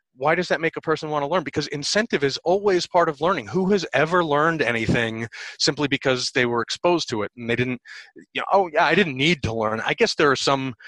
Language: English